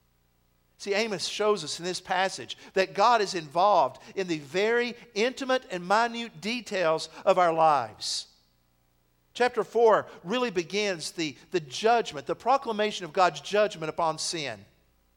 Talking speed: 140 wpm